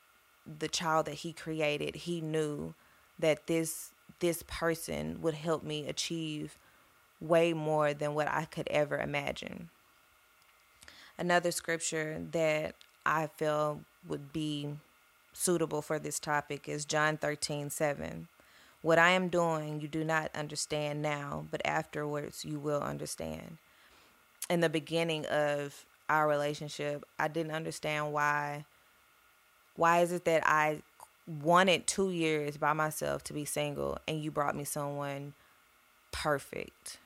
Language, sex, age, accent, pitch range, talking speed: English, female, 20-39, American, 150-165 Hz, 130 wpm